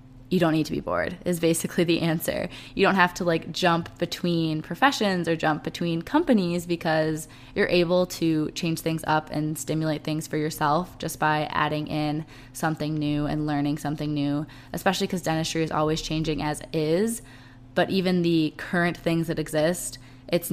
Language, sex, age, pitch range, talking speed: English, female, 20-39, 150-175 Hz, 175 wpm